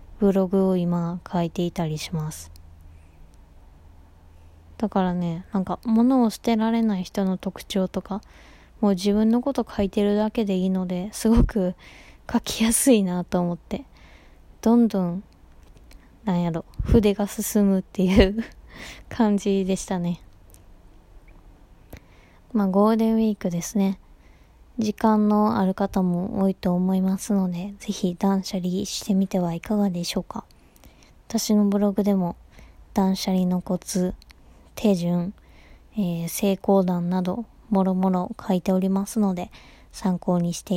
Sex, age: female, 20-39